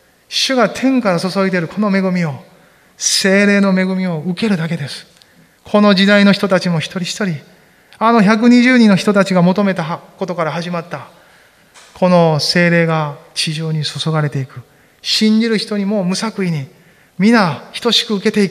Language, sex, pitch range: Japanese, male, 145-195 Hz